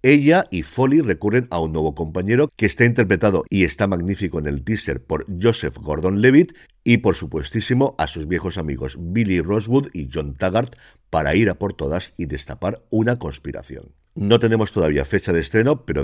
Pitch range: 85-120 Hz